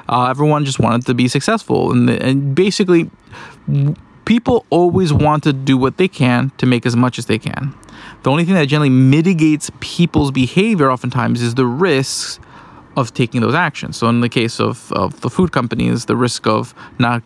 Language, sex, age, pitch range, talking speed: English, male, 20-39, 125-165 Hz, 190 wpm